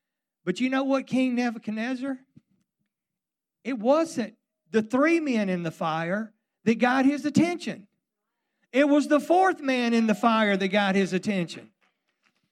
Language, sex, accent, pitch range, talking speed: English, male, American, 200-270 Hz, 145 wpm